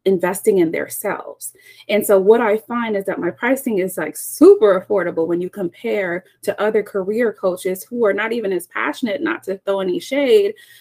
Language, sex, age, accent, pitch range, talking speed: English, female, 30-49, American, 175-245 Hz, 190 wpm